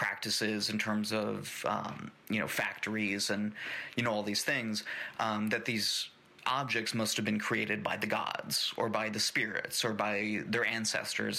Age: 30-49